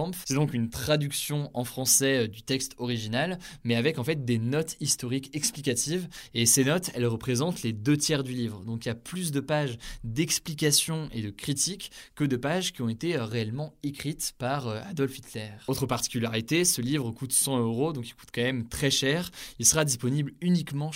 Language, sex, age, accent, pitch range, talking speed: French, male, 20-39, French, 120-145 Hz, 190 wpm